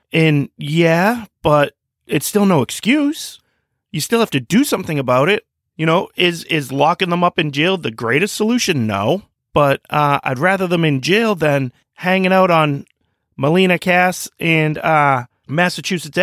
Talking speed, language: 165 wpm, English